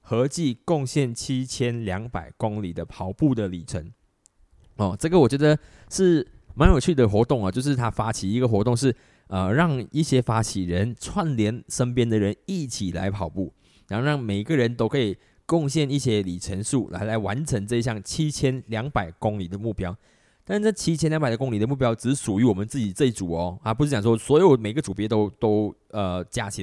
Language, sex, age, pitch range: Chinese, male, 20-39, 100-135 Hz